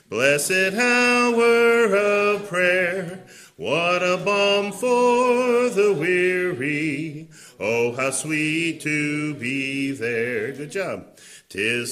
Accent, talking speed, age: American, 95 wpm, 40-59